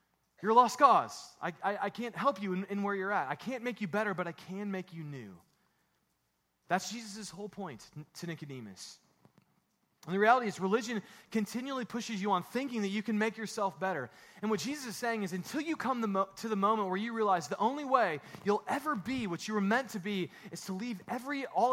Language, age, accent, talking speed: English, 30-49, American, 225 wpm